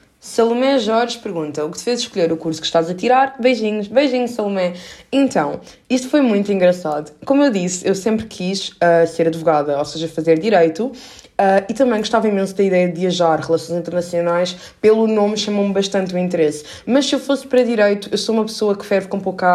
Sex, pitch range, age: female, 175-220 Hz, 20-39